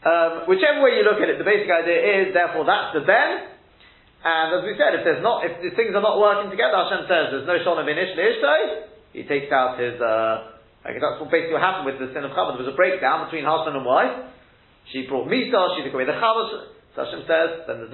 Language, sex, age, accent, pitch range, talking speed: English, male, 30-49, British, 130-195 Hz, 250 wpm